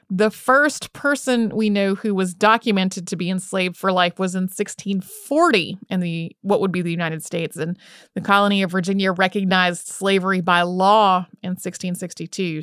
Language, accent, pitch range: English, American, 180-210 Hz